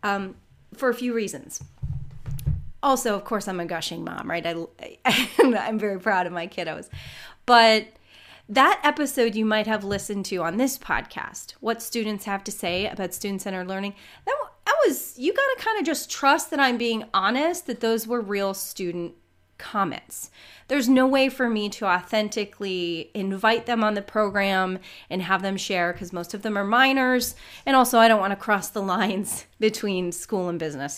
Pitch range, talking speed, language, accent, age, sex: 190-245 Hz, 185 wpm, English, American, 30-49, female